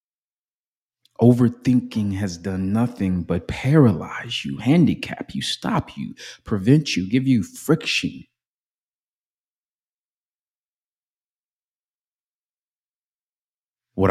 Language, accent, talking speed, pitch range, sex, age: English, American, 70 wpm, 95-130 Hz, male, 30-49